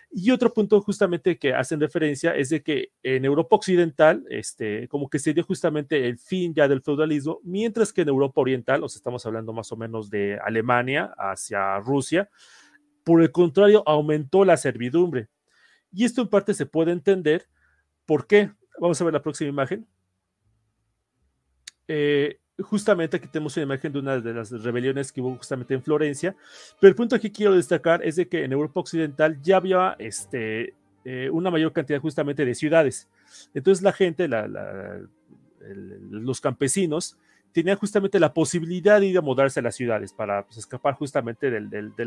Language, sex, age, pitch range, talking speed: Spanish, male, 40-59, 130-180 Hz, 180 wpm